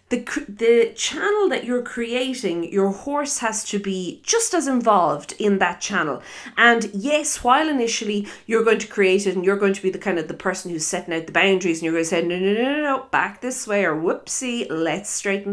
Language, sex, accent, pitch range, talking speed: English, female, Irish, 170-220 Hz, 225 wpm